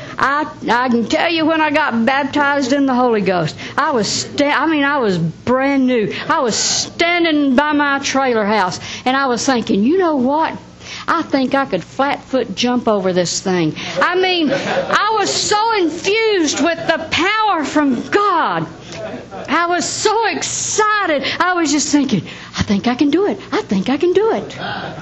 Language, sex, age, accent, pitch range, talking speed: English, female, 60-79, American, 260-360 Hz, 185 wpm